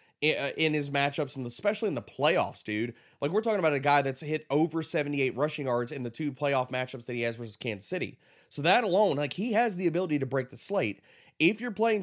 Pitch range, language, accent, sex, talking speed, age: 125-160 Hz, English, American, male, 235 wpm, 30-49